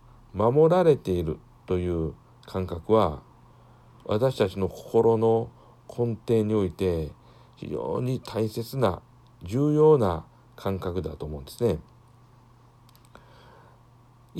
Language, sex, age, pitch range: Japanese, male, 60-79, 100-125 Hz